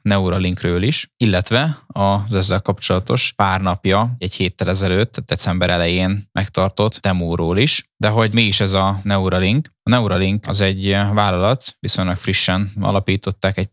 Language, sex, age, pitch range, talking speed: Hungarian, male, 10-29, 95-105 Hz, 140 wpm